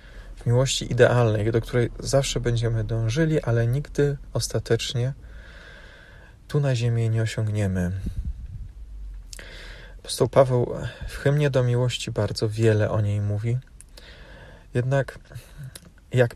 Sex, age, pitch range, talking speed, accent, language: male, 40-59, 105-125 Hz, 105 wpm, native, Polish